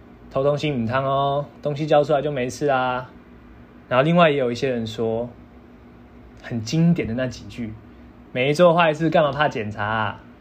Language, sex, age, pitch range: Chinese, male, 20-39, 100-150 Hz